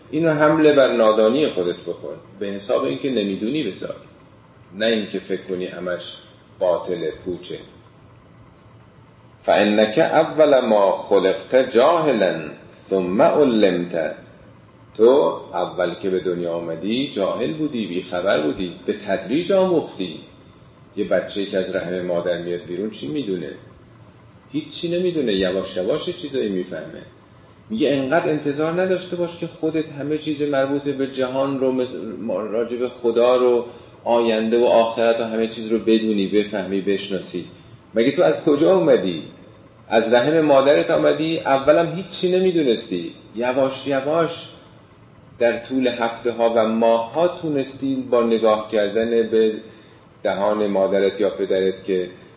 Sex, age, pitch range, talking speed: male, 40-59, 100-140 Hz, 130 wpm